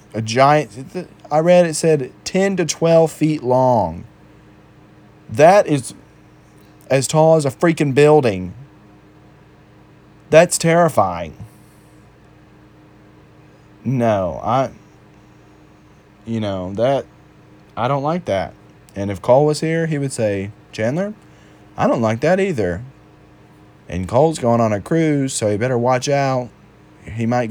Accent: American